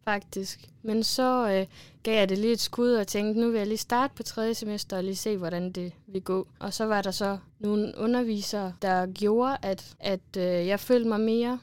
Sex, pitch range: female, 190-235 Hz